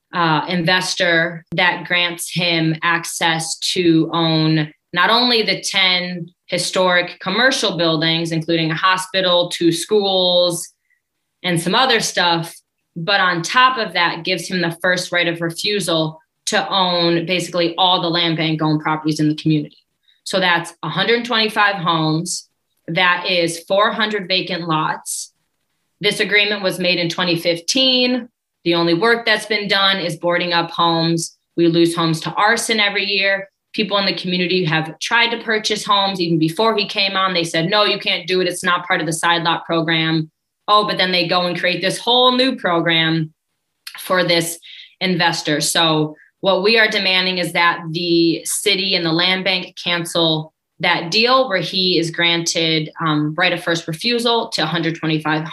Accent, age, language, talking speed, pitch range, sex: American, 20-39, English, 160 wpm, 165-195 Hz, female